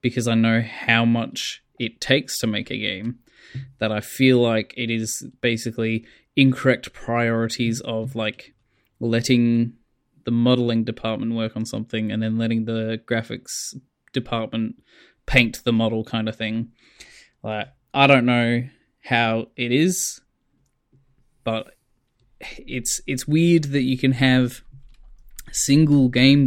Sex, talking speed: male, 130 wpm